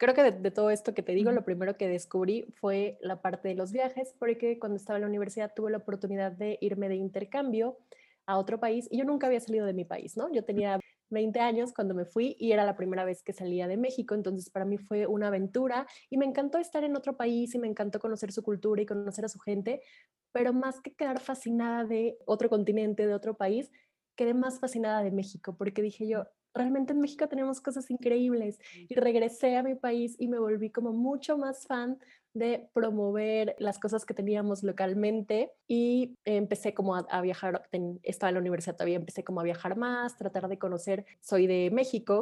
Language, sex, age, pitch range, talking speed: English, female, 20-39, 195-245 Hz, 215 wpm